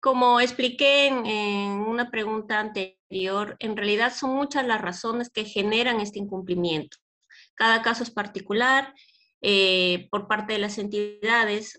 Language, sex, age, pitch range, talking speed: Spanish, female, 20-39, 185-240 Hz, 135 wpm